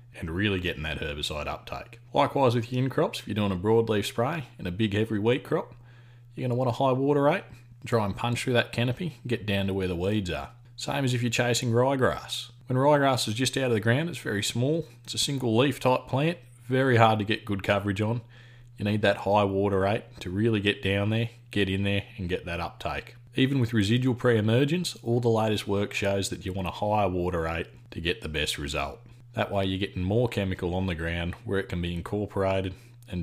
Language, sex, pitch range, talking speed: English, male, 90-120 Hz, 230 wpm